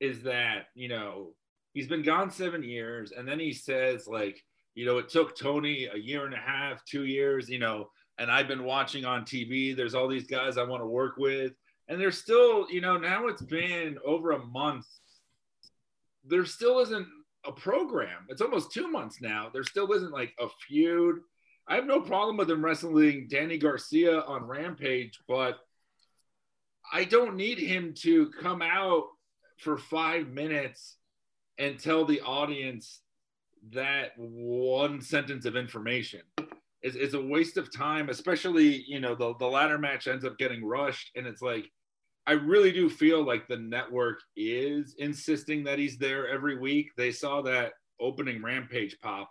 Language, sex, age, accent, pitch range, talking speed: English, male, 40-59, American, 125-165 Hz, 170 wpm